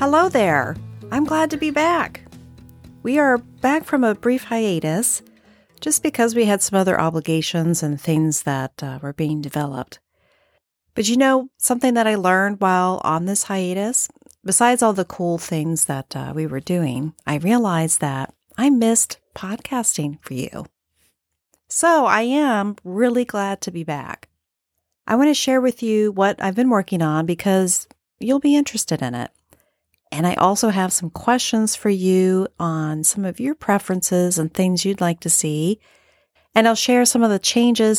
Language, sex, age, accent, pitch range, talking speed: English, female, 40-59, American, 155-225 Hz, 170 wpm